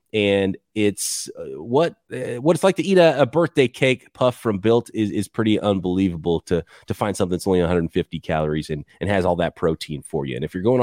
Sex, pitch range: male, 95-140 Hz